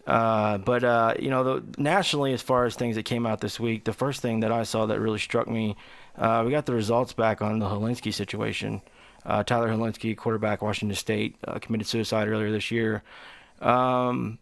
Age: 20-39